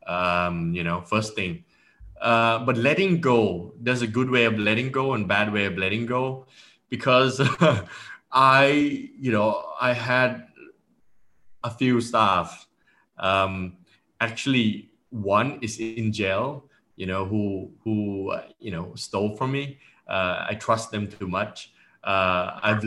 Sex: male